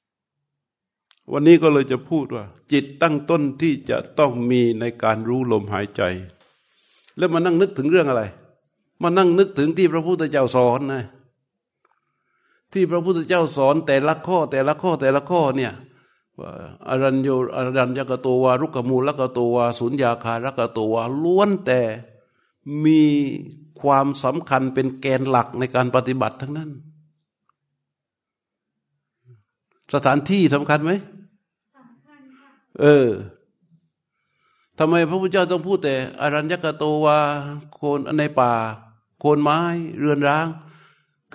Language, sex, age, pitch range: Thai, male, 60-79, 130-165 Hz